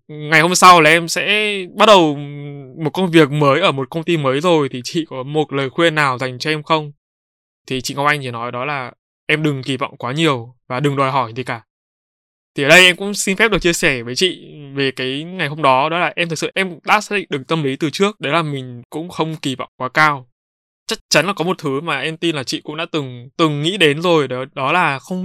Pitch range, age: 135-170 Hz, 20-39